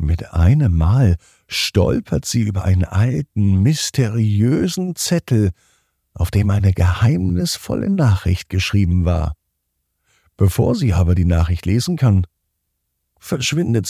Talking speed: 110 wpm